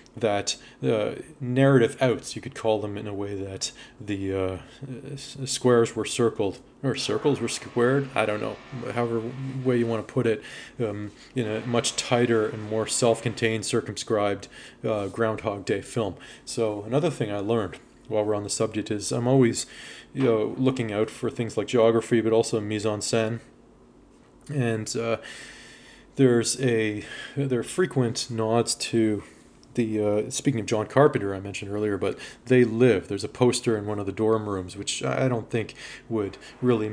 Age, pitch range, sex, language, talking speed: 20-39, 105-120 Hz, male, English, 165 wpm